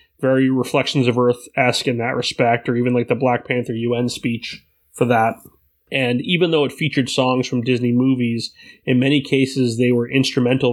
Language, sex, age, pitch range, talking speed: English, male, 30-49, 120-135 Hz, 180 wpm